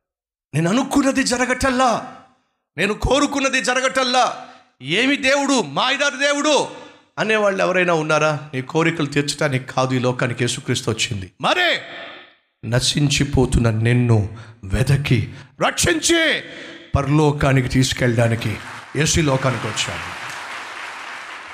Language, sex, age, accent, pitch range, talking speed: Telugu, male, 50-69, native, 115-175 Hz, 90 wpm